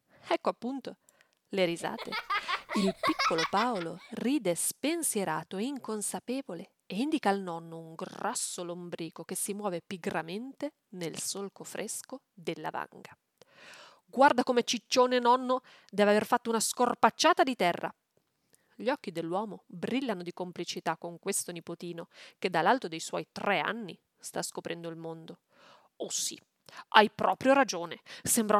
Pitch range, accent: 170-235 Hz, native